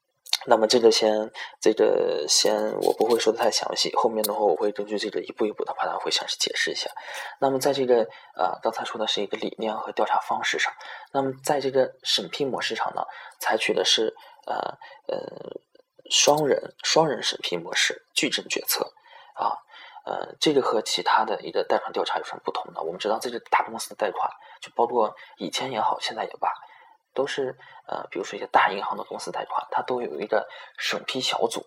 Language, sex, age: Chinese, male, 20-39